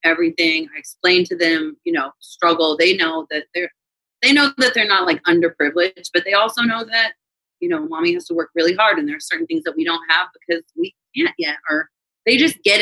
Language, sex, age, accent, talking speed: English, female, 30-49, American, 230 wpm